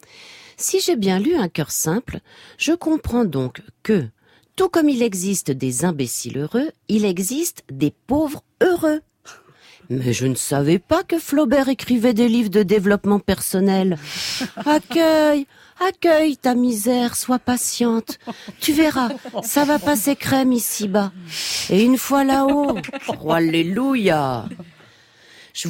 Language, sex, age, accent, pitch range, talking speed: French, female, 40-59, French, 170-275 Hz, 130 wpm